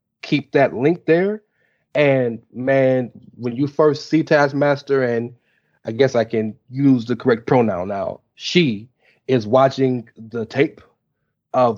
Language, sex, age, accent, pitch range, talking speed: English, male, 30-49, American, 120-145 Hz, 140 wpm